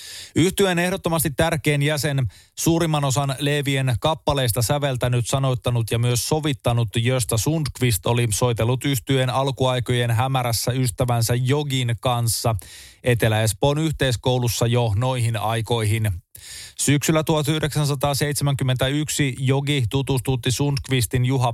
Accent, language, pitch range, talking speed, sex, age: native, Finnish, 120-140 Hz, 95 wpm, male, 20-39